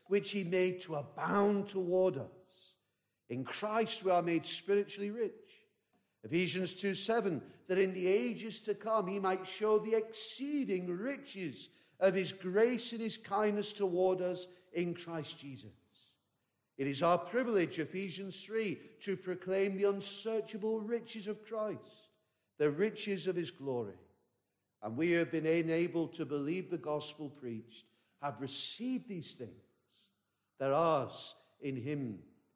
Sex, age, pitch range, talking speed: male, 50-69, 155-195 Hz, 140 wpm